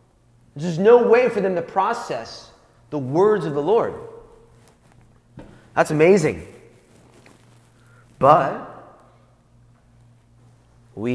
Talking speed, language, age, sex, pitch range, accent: 85 wpm, English, 30-49, male, 120-185 Hz, American